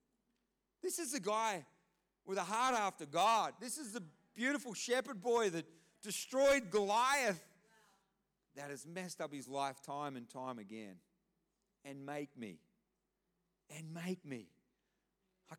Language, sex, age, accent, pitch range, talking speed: English, male, 40-59, Australian, 170-225 Hz, 135 wpm